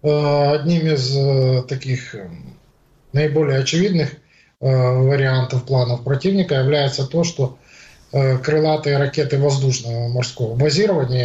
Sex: male